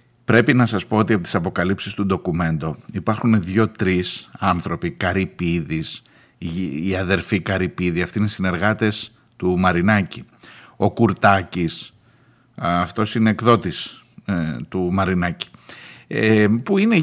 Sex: male